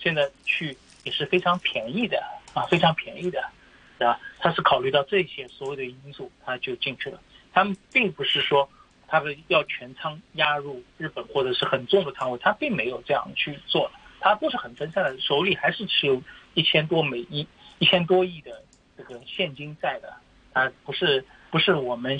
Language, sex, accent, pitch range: Chinese, male, native, 135-180 Hz